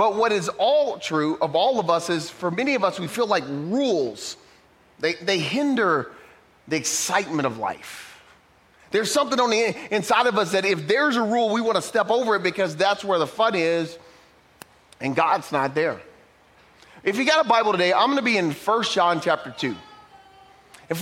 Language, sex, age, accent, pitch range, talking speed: English, male, 30-49, American, 165-225 Hz, 195 wpm